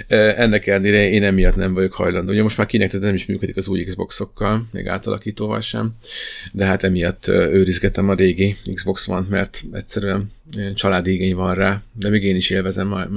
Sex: male